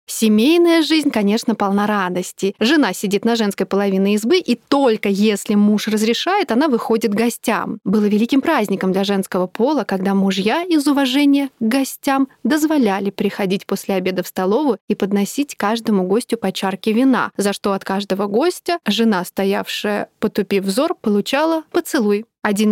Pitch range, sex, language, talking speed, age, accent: 200-245 Hz, female, Russian, 150 wpm, 30-49, native